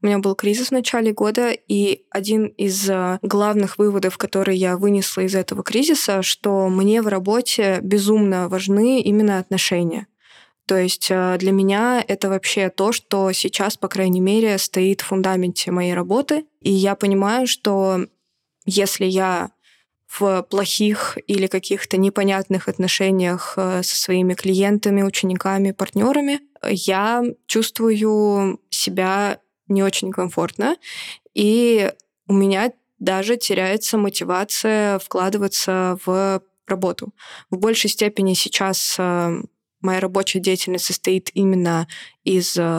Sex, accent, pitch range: female, native, 185-215 Hz